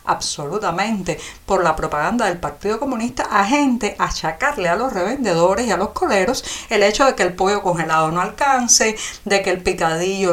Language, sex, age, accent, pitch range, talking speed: Spanish, female, 50-69, American, 170-230 Hz, 175 wpm